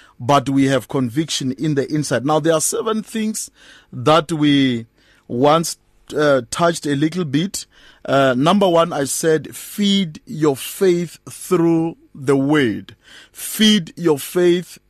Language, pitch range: English, 140-180 Hz